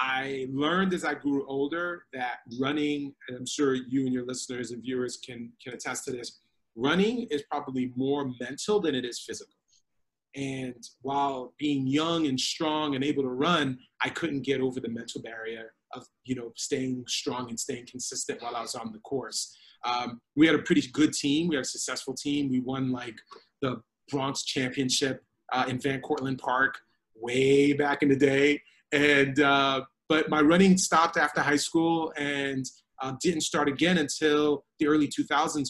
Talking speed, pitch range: 180 wpm, 130-150 Hz